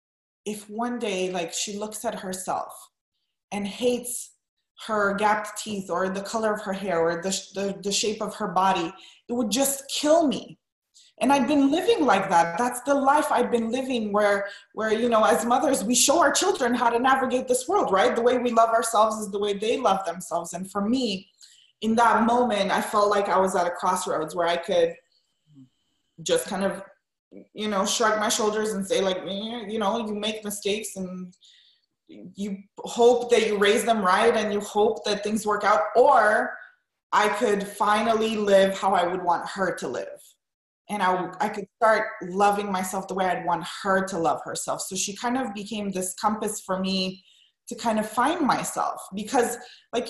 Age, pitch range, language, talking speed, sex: 20-39, 195-235 Hz, English, 195 wpm, female